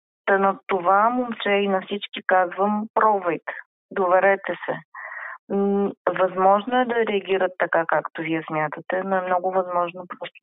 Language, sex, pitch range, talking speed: Bulgarian, female, 180-210 Hz, 130 wpm